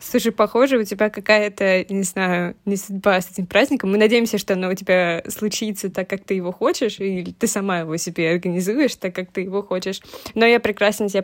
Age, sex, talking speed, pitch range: 20-39, female, 210 wpm, 190-230 Hz